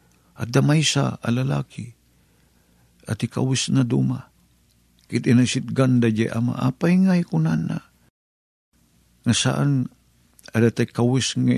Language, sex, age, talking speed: Filipino, male, 50-69, 115 wpm